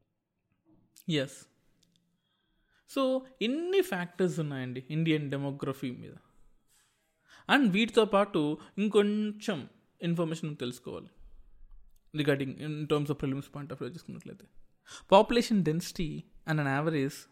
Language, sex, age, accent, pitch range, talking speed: Telugu, male, 20-39, native, 140-180 Hz, 105 wpm